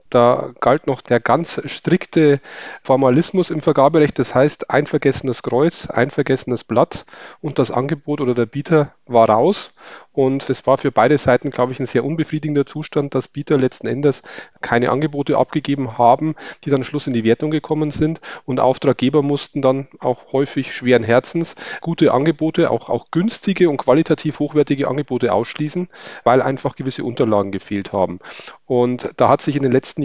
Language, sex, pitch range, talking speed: German, male, 125-155 Hz, 170 wpm